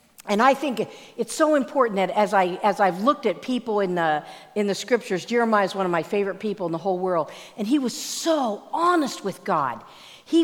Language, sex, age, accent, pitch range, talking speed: English, female, 50-69, American, 185-255 Hz, 220 wpm